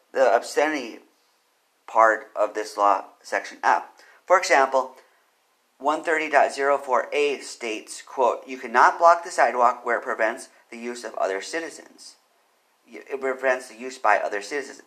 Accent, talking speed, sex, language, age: American, 135 wpm, male, English, 50-69